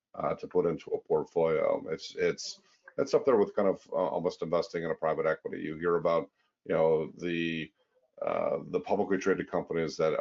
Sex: male